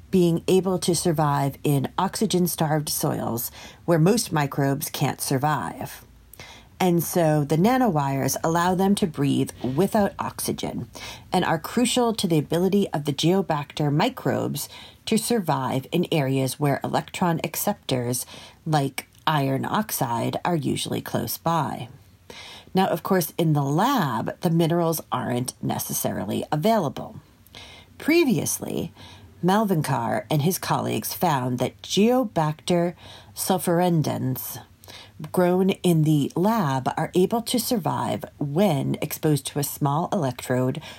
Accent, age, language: American, 40-59, English